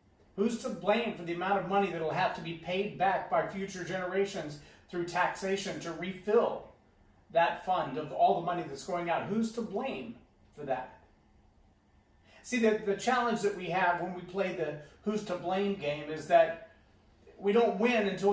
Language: English